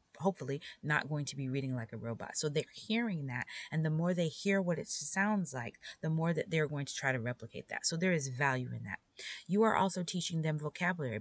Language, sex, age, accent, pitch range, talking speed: English, female, 30-49, American, 140-180 Hz, 235 wpm